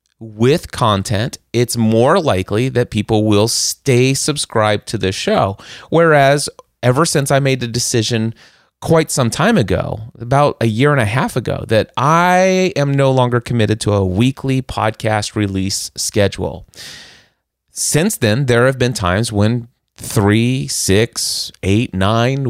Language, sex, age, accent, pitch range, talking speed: English, male, 30-49, American, 105-135 Hz, 145 wpm